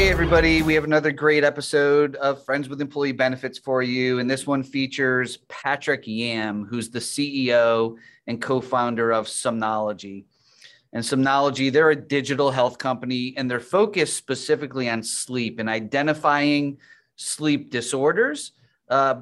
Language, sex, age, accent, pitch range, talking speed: English, male, 30-49, American, 115-140 Hz, 140 wpm